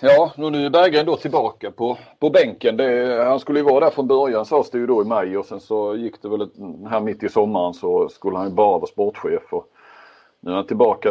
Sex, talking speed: male, 250 wpm